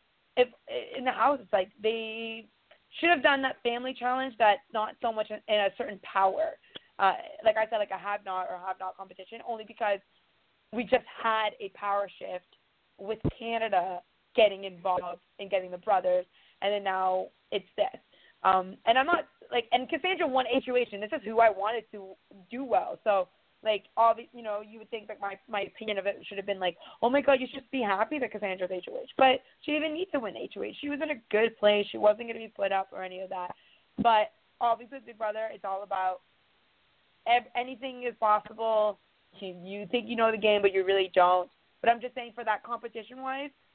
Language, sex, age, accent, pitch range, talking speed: English, female, 20-39, American, 200-250 Hz, 210 wpm